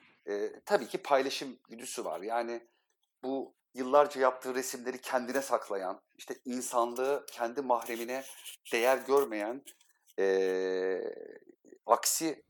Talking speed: 100 wpm